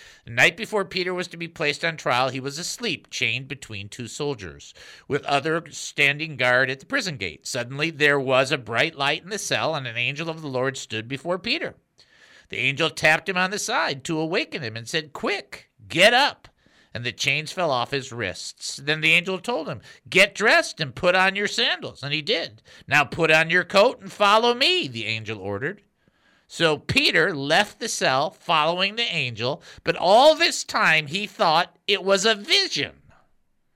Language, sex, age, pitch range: English, male, 50-69, 140-200 Hz